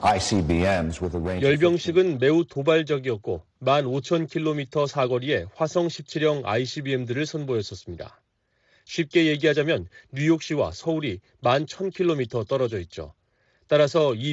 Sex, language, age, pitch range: male, Korean, 30-49, 125-160 Hz